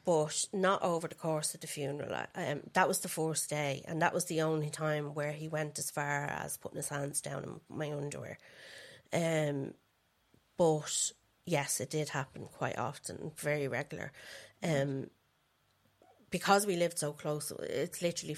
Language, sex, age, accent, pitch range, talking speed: English, female, 30-49, Irish, 150-165 Hz, 165 wpm